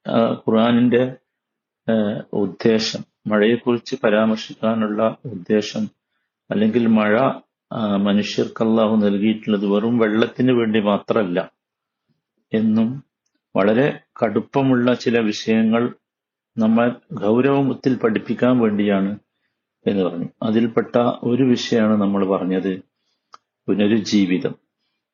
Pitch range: 100-115 Hz